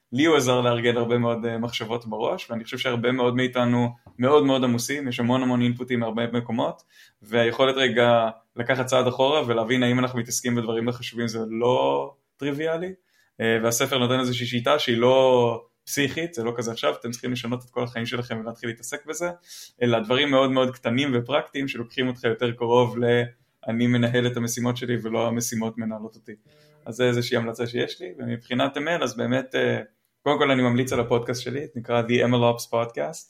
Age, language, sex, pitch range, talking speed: 20-39, Hebrew, male, 115-125 Hz, 155 wpm